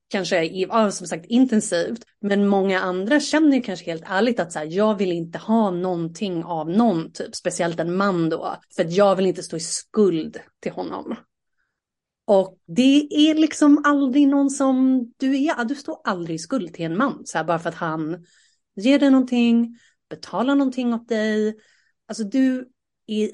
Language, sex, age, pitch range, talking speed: Swedish, female, 30-49, 185-255 Hz, 165 wpm